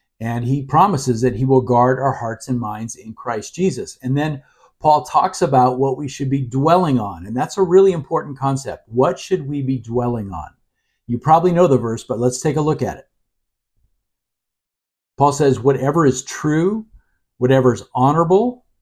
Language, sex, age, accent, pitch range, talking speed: English, male, 50-69, American, 125-155 Hz, 180 wpm